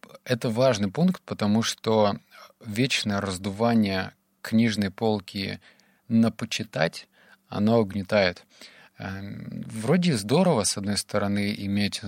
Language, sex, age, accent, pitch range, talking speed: Russian, male, 20-39, native, 100-115 Hz, 95 wpm